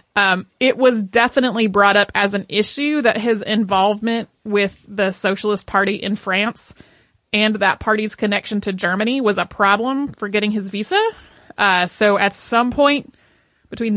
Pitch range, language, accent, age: 200-270 Hz, English, American, 30-49